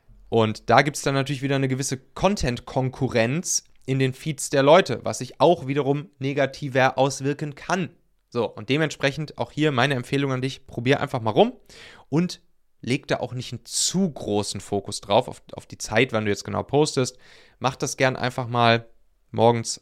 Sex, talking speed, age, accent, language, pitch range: male, 180 wpm, 30-49, German, German, 120-150 Hz